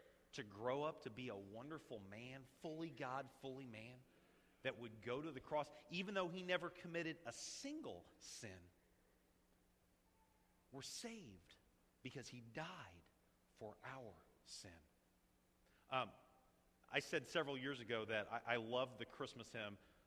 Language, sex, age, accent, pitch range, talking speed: English, male, 40-59, American, 105-155 Hz, 140 wpm